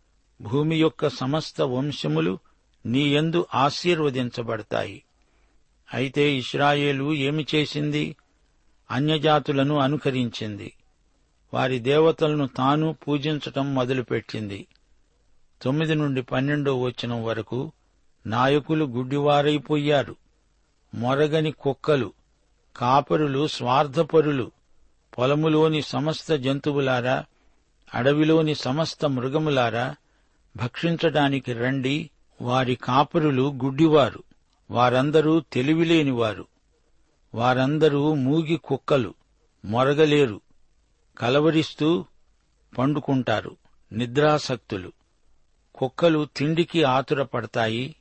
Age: 60-79